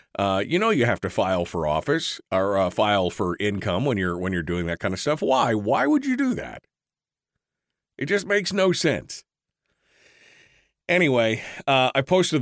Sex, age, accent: male, 40-59, American